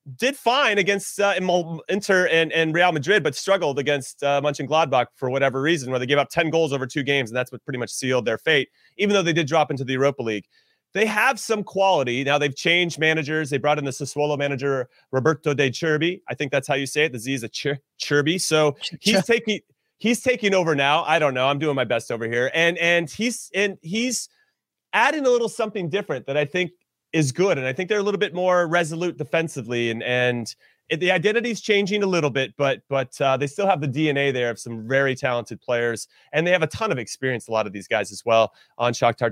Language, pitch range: English, 130-170 Hz